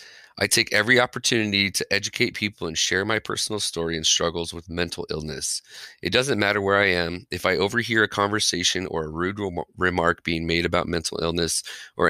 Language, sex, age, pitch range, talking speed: English, male, 30-49, 85-105 Hz, 195 wpm